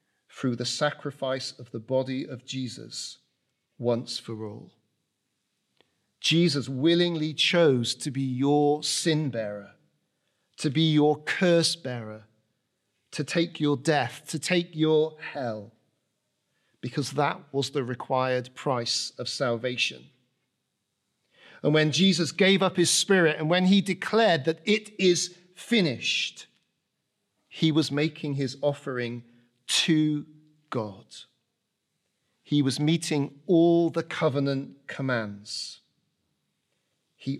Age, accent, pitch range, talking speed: 40-59, British, 125-160 Hz, 110 wpm